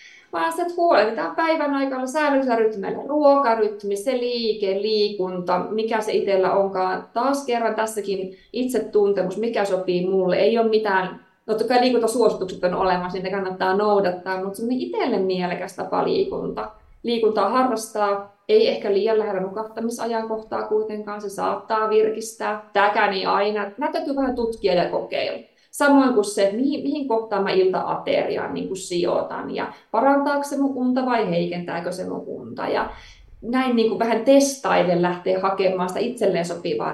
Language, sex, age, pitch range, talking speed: Finnish, female, 20-39, 190-245 Hz, 145 wpm